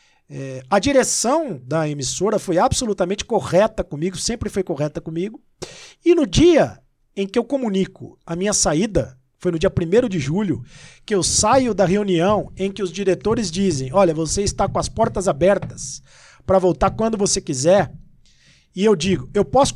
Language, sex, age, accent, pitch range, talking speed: Portuguese, male, 50-69, Brazilian, 165-220 Hz, 170 wpm